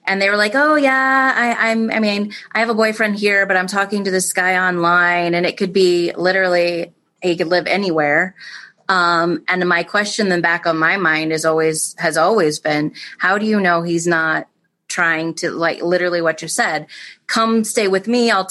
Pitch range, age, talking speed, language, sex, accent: 165-200 Hz, 30-49, 205 wpm, English, female, American